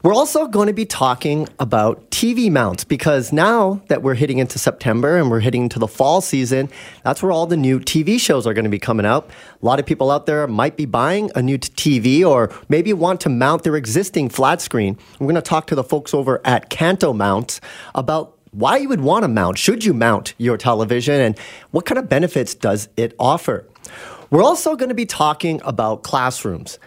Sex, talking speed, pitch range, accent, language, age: male, 215 wpm, 125-180 Hz, American, English, 40-59